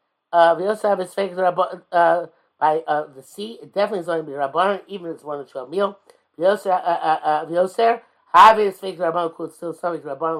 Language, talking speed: English, 215 wpm